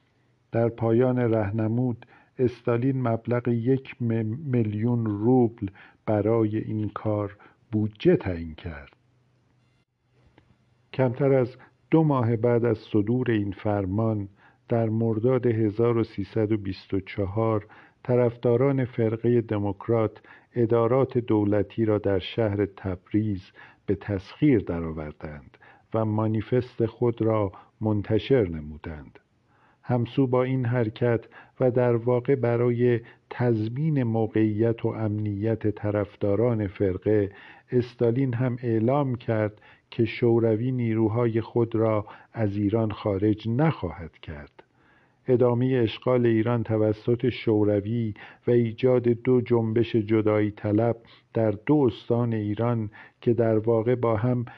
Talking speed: 100 wpm